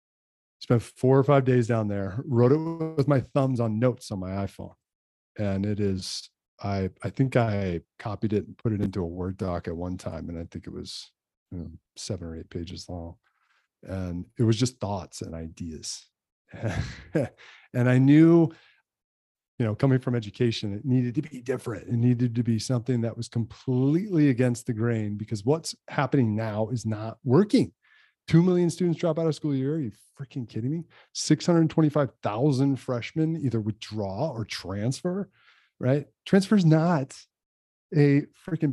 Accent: American